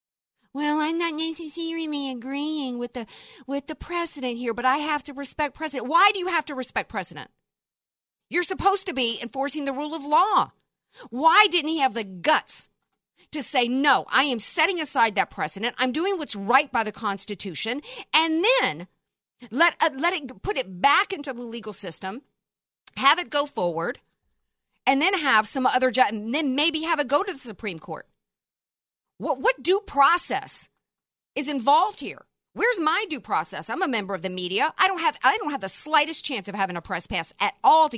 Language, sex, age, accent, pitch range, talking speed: English, female, 50-69, American, 185-295 Hz, 195 wpm